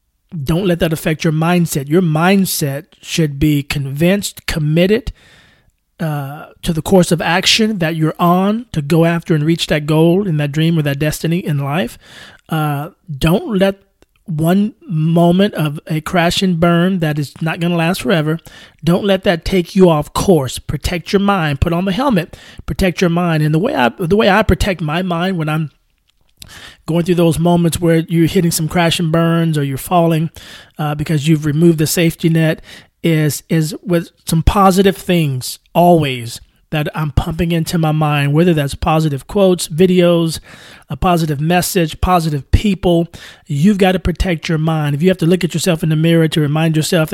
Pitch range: 155-180 Hz